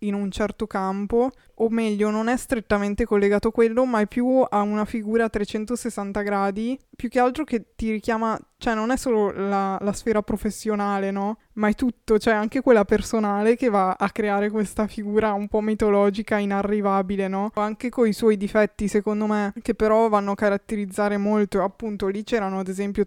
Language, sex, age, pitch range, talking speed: Italian, female, 20-39, 200-225 Hz, 185 wpm